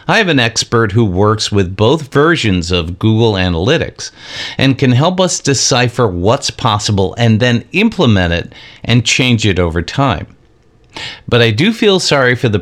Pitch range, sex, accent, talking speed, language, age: 105-145 Hz, male, American, 165 wpm, English, 50-69